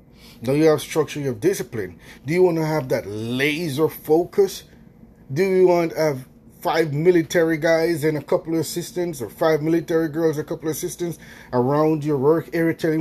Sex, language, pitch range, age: male, English, 140-195 Hz, 30-49